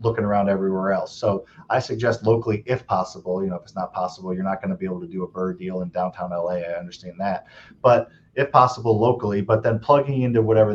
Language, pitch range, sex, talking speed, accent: English, 100-130 Hz, male, 230 wpm, American